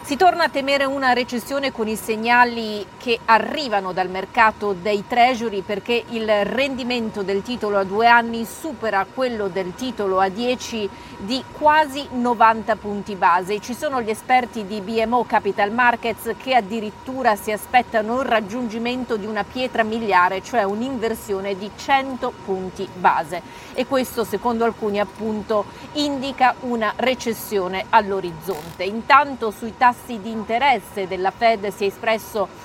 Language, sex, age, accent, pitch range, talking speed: Italian, female, 40-59, native, 200-240 Hz, 140 wpm